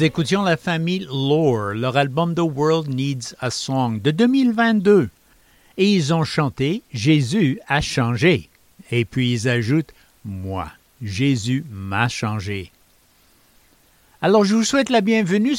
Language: English